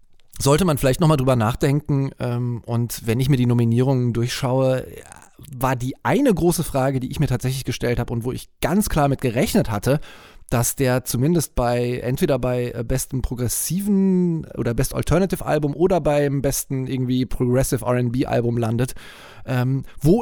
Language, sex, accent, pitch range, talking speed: German, male, German, 125-155 Hz, 155 wpm